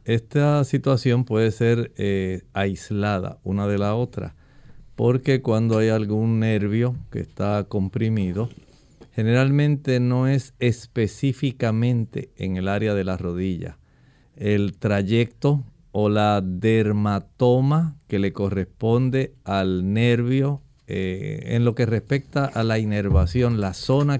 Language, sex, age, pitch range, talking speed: Spanish, male, 50-69, 105-125 Hz, 120 wpm